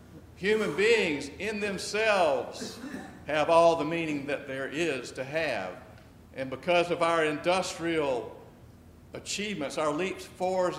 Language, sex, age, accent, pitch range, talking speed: English, male, 60-79, American, 115-165 Hz, 120 wpm